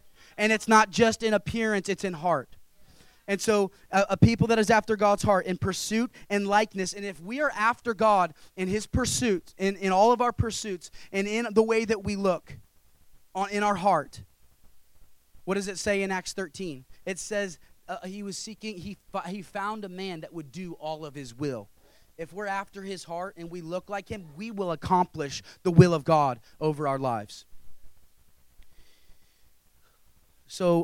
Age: 30-49